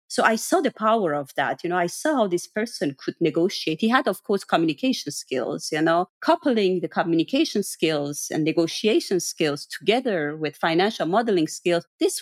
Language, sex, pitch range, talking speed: English, female, 165-215 Hz, 180 wpm